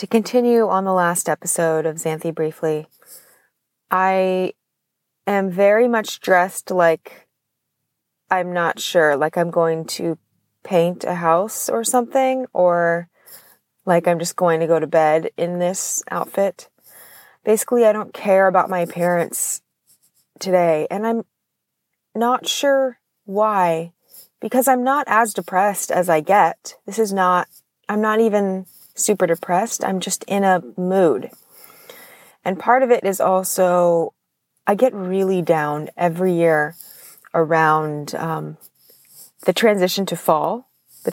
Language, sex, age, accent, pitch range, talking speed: English, female, 20-39, American, 165-200 Hz, 135 wpm